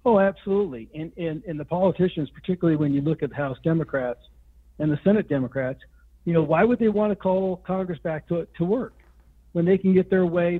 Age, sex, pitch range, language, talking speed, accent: 60-79, male, 145-185 Hz, English, 215 wpm, American